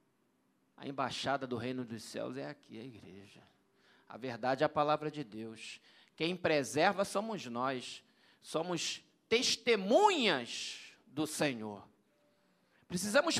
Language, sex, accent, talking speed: Portuguese, male, Brazilian, 115 wpm